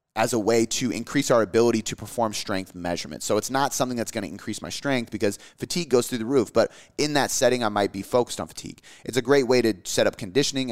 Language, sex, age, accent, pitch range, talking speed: English, male, 30-49, American, 95-120 Hz, 250 wpm